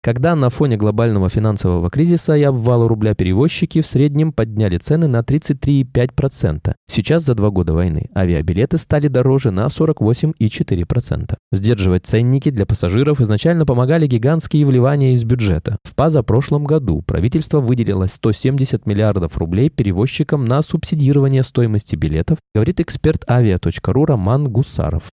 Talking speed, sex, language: 130 wpm, male, Russian